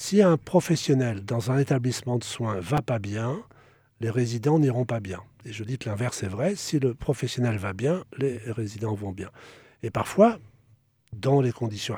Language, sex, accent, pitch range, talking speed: French, male, French, 110-145 Hz, 190 wpm